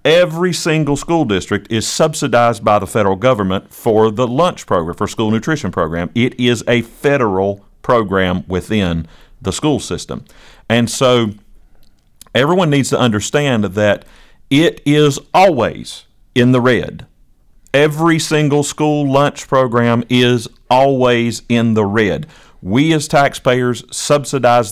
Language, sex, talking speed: English, male, 130 wpm